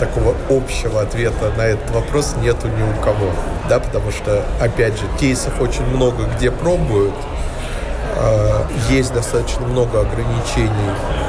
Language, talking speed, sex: Russian, 130 wpm, male